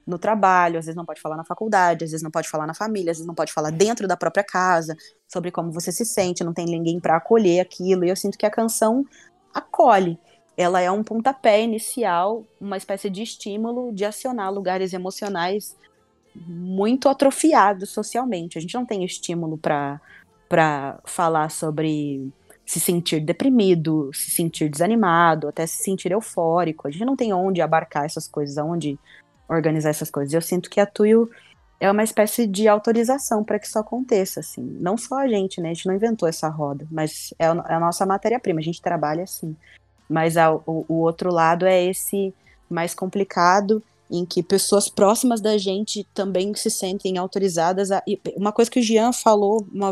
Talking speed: 185 wpm